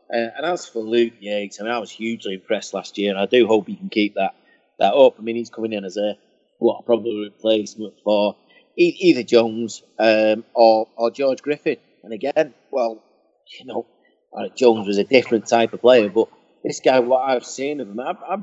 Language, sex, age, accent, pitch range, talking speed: English, male, 30-49, British, 105-130 Hz, 210 wpm